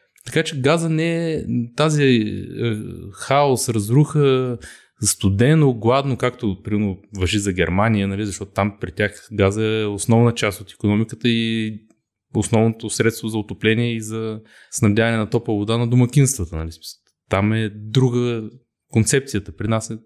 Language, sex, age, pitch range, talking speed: Bulgarian, male, 20-39, 100-130 Hz, 140 wpm